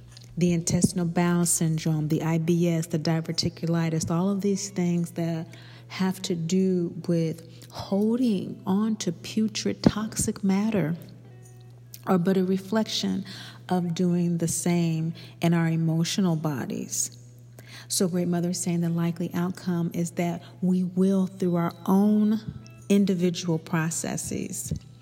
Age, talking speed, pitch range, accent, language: 40-59, 125 wpm, 155-185 Hz, American, English